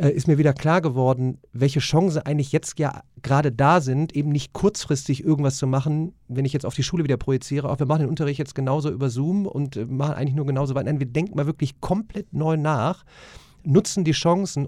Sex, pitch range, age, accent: male, 140-180 Hz, 40-59, German